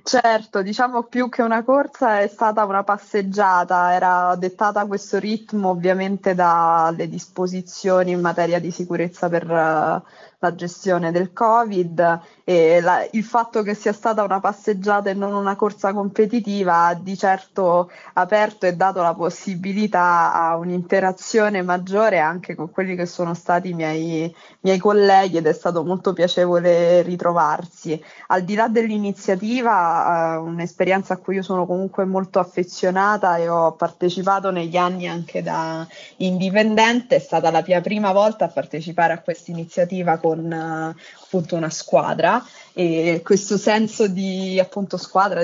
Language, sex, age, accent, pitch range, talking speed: Italian, female, 20-39, native, 170-195 Hz, 145 wpm